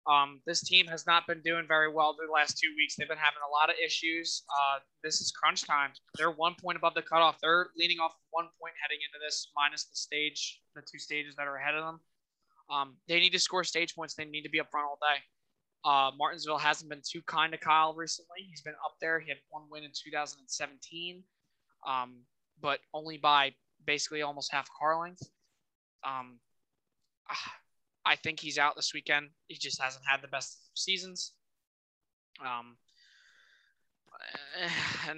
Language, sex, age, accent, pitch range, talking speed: English, male, 20-39, American, 140-160 Hz, 190 wpm